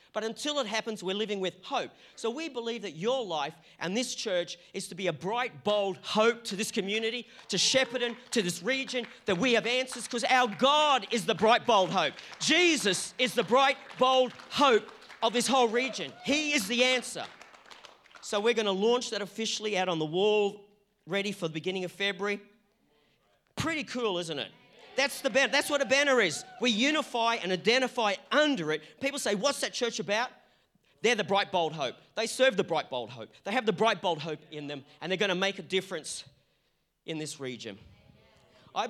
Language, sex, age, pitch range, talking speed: English, male, 40-59, 180-240 Hz, 200 wpm